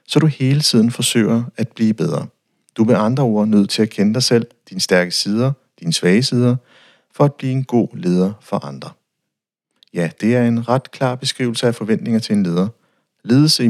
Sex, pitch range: male, 105-135 Hz